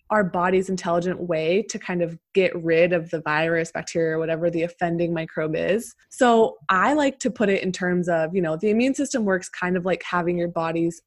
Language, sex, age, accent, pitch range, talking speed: English, female, 20-39, American, 165-195 Hz, 215 wpm